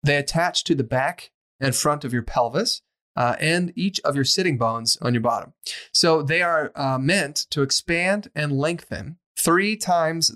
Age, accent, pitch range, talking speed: 30-49, American, 125-160 Hz, 180 wpm